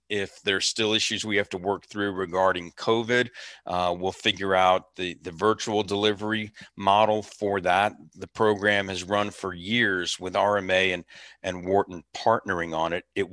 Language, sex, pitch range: English, male, 95-110 Hz